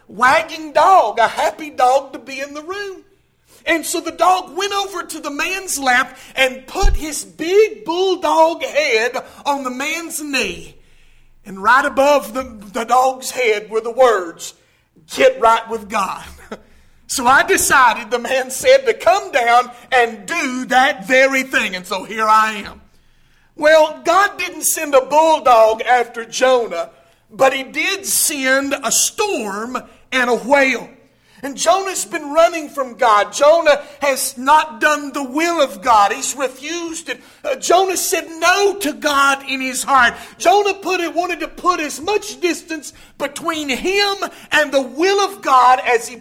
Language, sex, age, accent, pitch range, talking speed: English, male, 50-69, American, 250-330 Hz, 160 wpm